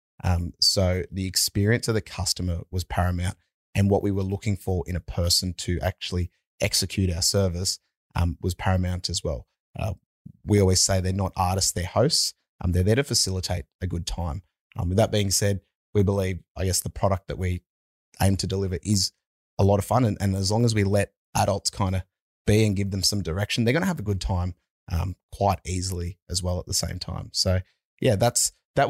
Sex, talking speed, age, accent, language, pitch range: male, 210 wpm, 30-49, Australian, English, 90-105 Hz